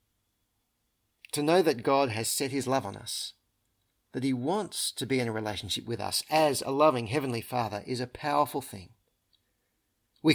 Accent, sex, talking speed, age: Australian, male, 175 wpm, 40-59